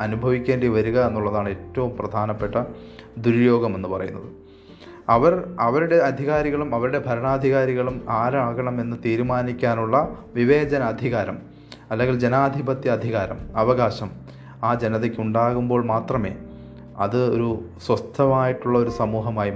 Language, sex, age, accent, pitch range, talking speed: Malayalam, male, 30-49, native, 105-125 Hz, 80 wpm